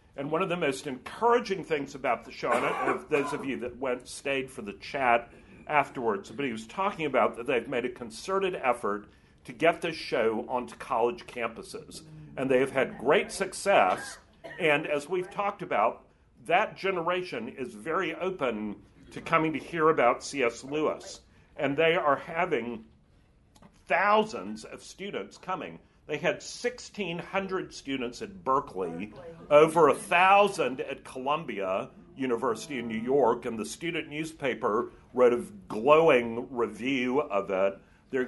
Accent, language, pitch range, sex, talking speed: American, English, 120-175 Hz, male, 150 wpm